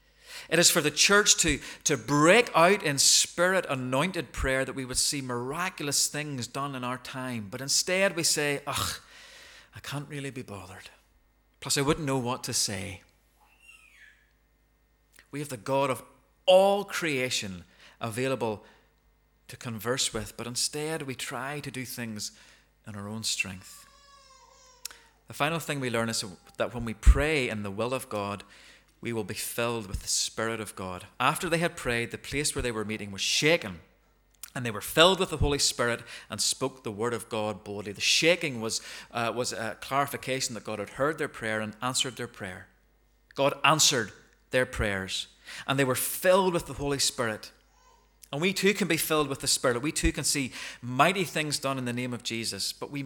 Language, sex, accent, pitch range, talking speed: English, male, British, 110-145 Hz, 185 wpm